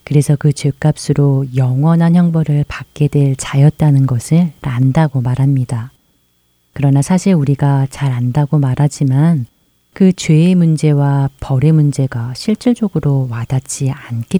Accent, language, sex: native, Korean, female